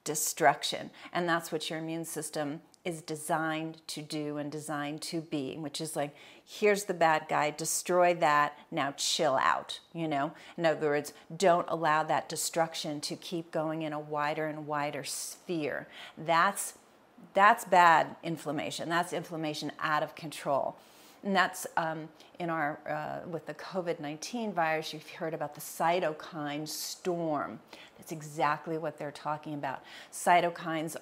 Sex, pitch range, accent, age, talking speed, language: female, 155-175 Hz, American, 40-59, 150 wpm, English